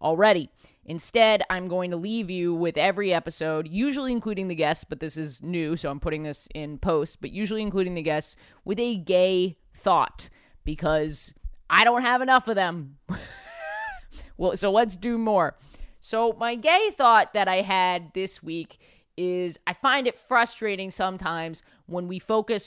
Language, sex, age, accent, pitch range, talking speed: English, female, 20-39, American, 170-225 Hz, 170 wpm